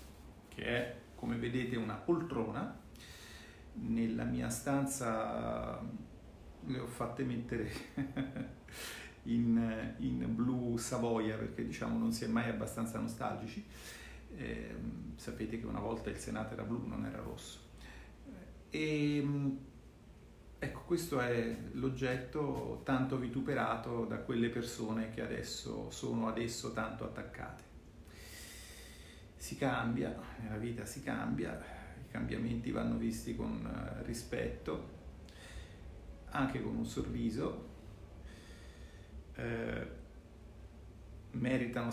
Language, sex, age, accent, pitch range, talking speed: Italian, male, 40-59, native, 110-125 Hz, 100 wpm